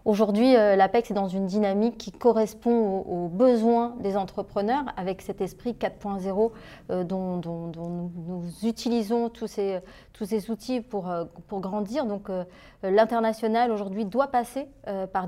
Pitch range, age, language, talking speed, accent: 200-245 Hz, 30-49, French, 145 wpm, French